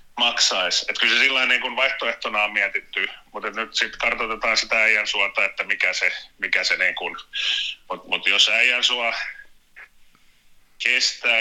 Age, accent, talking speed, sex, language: 30-49, native, 135 wpm, male, Finnish